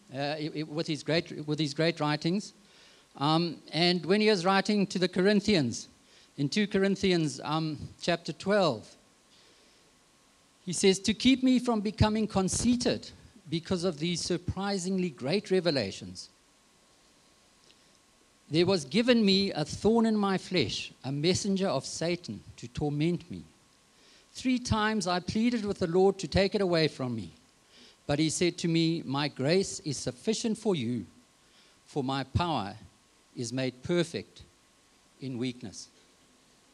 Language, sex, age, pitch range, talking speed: English, male, 50-69, 145-195 Hz, 140 wpm